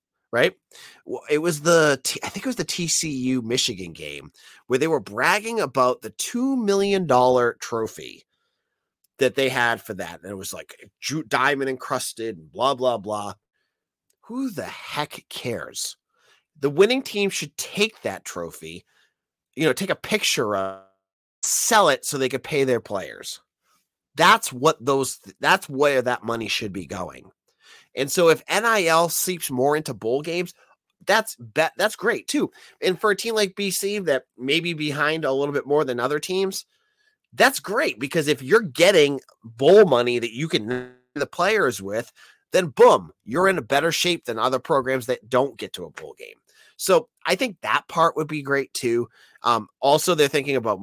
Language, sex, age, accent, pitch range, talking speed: English, male, 30-49, American, 125-200 Hz, 170 wpm